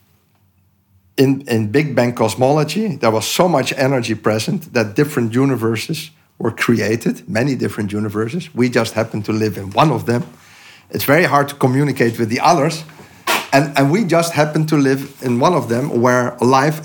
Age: 50-69